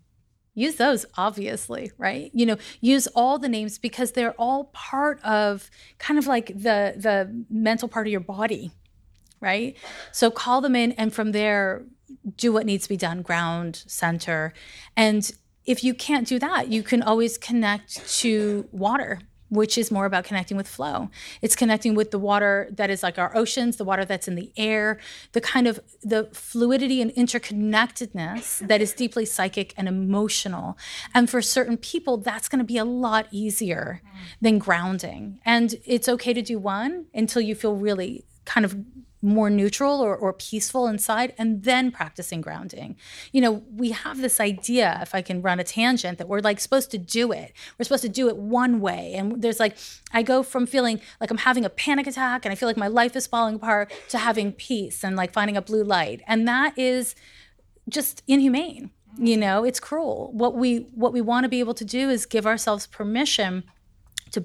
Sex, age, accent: female, 30-49, American